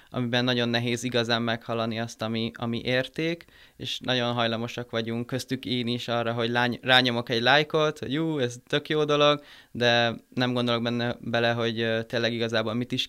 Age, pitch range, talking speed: 20-39, 115-125 Hz, 165 wpm